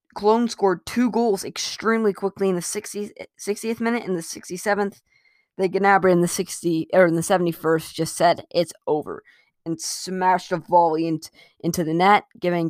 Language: English